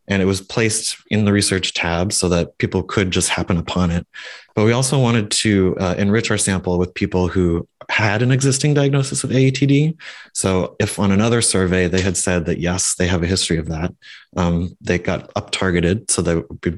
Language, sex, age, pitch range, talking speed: English, male, 20-39, 85-105 Hz, 205 wpm